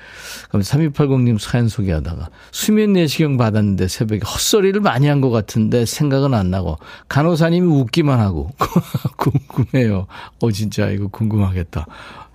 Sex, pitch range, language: male, 105-160 Hz, Korean